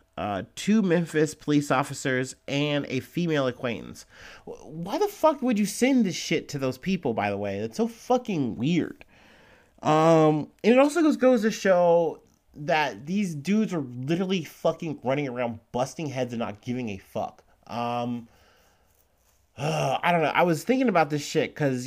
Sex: male